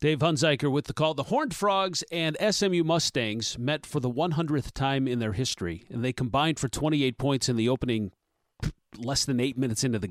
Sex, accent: male, American